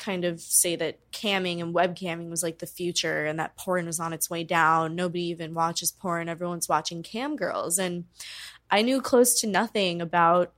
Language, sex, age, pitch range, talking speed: English, female, 20-39, 170-195 Hz, 195 wpm